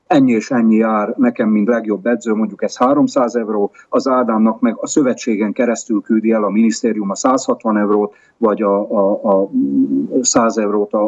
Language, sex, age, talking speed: Slovak, male, 40-59, 170 wpm